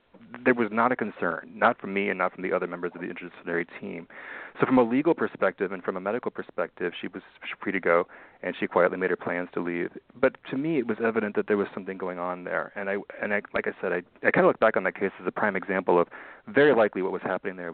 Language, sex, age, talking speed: English, male, 30-49, 275 wpm